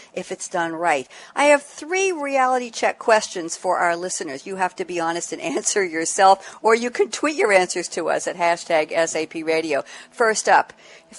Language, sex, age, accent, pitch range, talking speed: English, female, 60-79, American, 175-260 Hz, 195 wpm